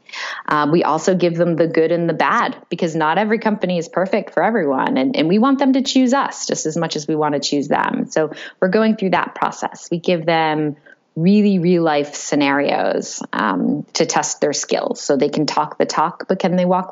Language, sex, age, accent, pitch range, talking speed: English, female, 20-39, American, 150-210 Hz, 225 wpm